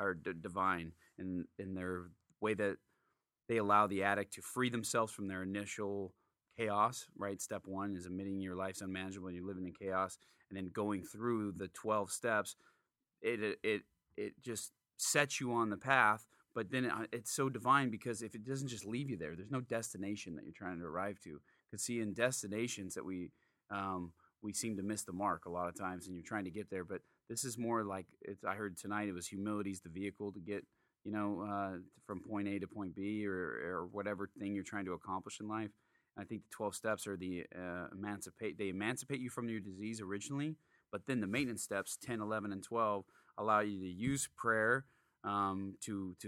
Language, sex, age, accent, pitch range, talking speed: English, male, 30-49, American, 95-110 Hz, 210 wpm